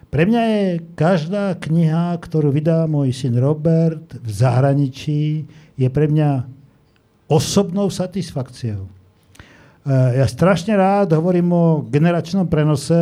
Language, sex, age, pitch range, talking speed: Slovak, male, 50-69, 135-175 Hz, 115 wpm